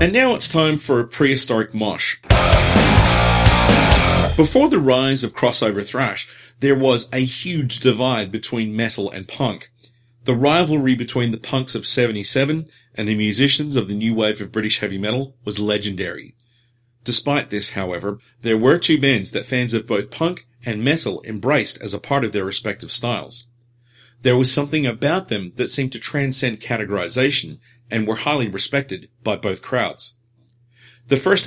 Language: English